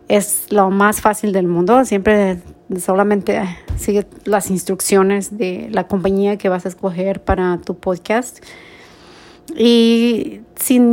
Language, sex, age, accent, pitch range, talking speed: English, female, 30-49, Mexican, 195-230 Hz, 125 wpm